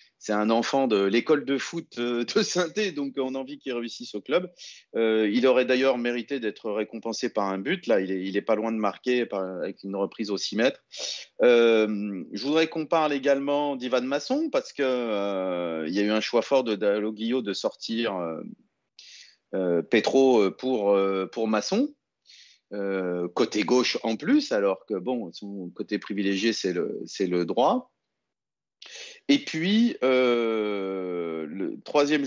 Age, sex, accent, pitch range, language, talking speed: 30-49, male, French, 100-140 Hz, French, 170 wpm